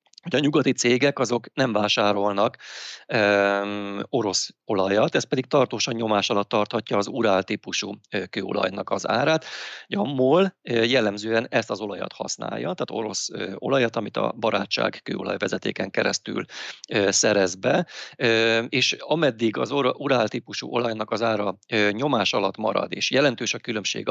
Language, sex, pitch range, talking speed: Hungarian, male, 105-125 Hz, 135 wpm